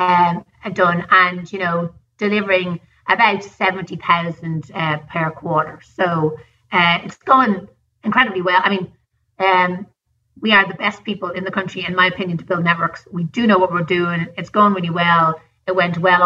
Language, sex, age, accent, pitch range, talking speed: English, female, 30-49, Irish, 175-205 Hz, 175 wpm